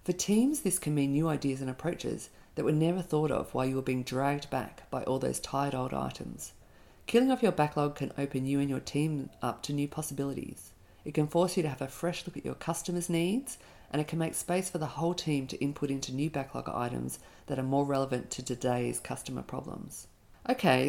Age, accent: 40-59, Australian